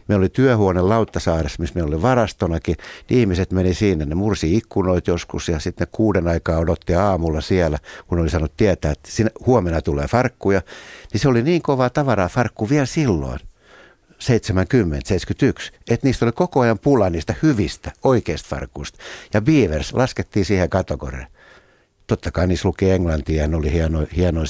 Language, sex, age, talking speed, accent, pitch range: Finnish, male, 60-79, 165 wpm, native, 80-110 Hz